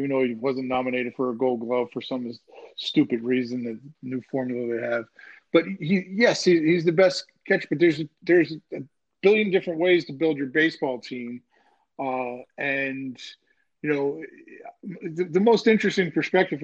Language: English